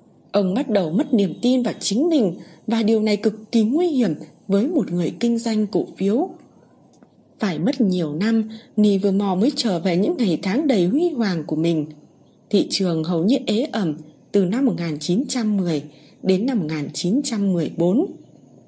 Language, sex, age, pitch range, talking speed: Vietnamese, female, 20-39, 185-240 Hz, 165 wpm